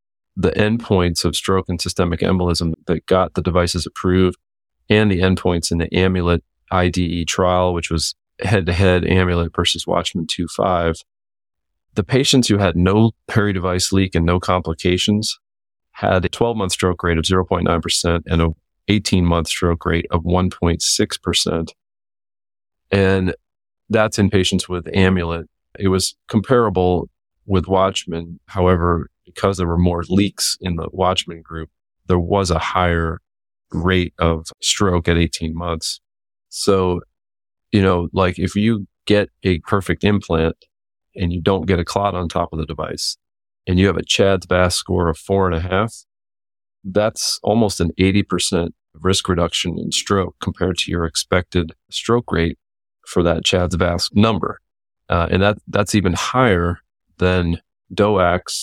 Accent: American